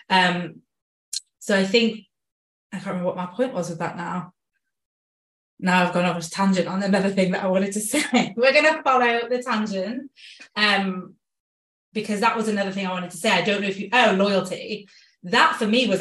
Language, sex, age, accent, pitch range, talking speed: English, female, 20-39, British, 175-200 Hz, 205 wpm